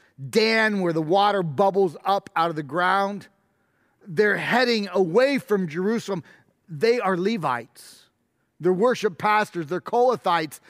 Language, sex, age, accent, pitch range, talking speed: English, male, 40-59, American, 170-225 Hz, 130 wpm